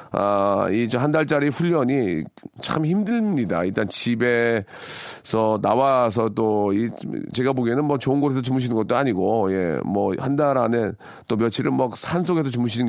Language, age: Korean, 40-59